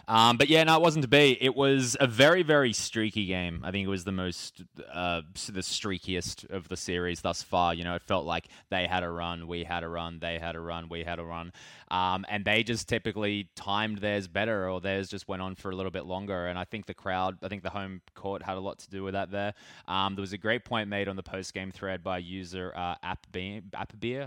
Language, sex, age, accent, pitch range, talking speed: English, male, 20-39, Australian, 90-105 Hz, 250 wpm